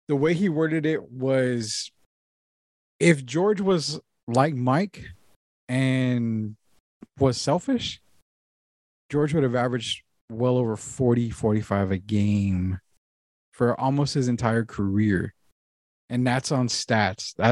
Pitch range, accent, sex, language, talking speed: 105-135 Hz, American, male, English, 115 wpm